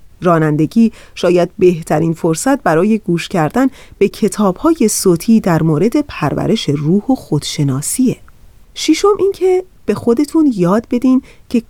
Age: 30-49